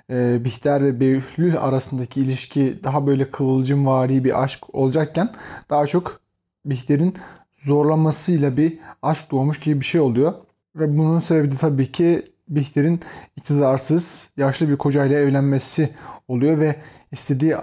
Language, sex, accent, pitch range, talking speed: Turkish, male, native, 135-155 Hz, 125 wpm